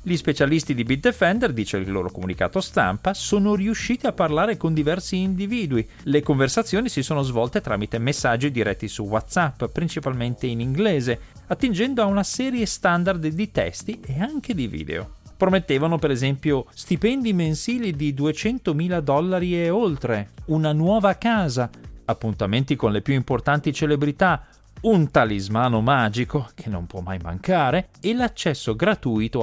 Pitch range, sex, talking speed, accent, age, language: 110-175 Hz, male, 145 wpm, native, 40-59, Italian